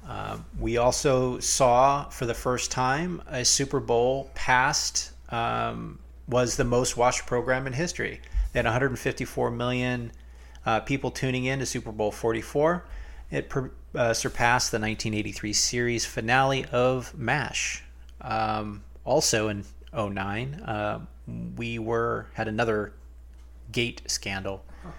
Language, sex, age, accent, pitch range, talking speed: English, male, 30-49, American, 100-125 Hz, 125 wpm